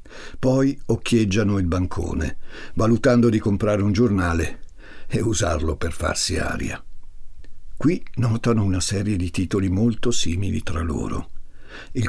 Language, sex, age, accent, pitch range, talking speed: Italian, male, 60-79, native, 90-115 Hz, 125 wpm